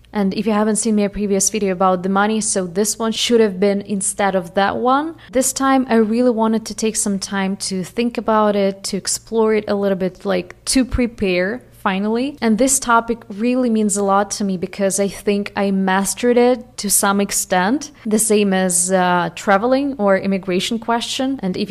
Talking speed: 200 wpm